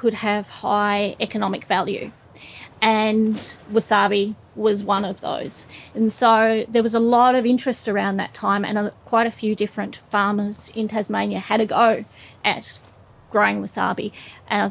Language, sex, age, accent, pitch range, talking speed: English, female, 30-49, Australian, 195-220 Hz, 150 wpm